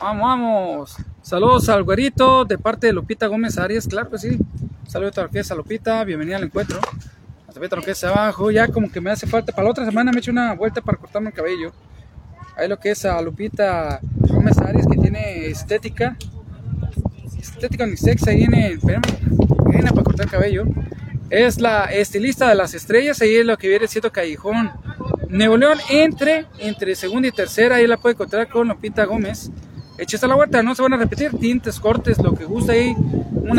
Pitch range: 175-235 Hz